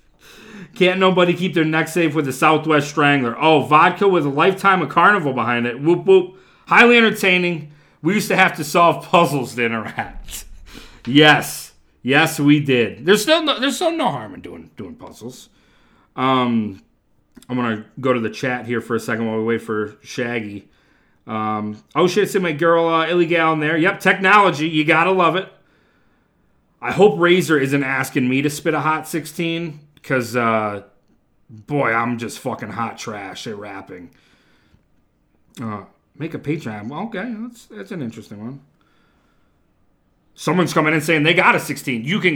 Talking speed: 175 wpm